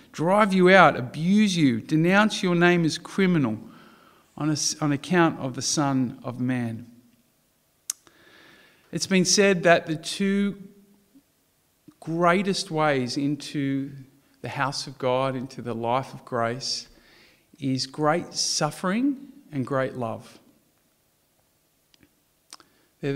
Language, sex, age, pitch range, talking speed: English, male, 50-69, 115-150 Hz, 115 wpm